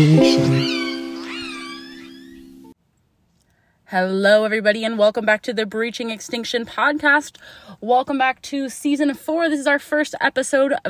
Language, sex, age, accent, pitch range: English, female, 20-39, American, 170-230 Hz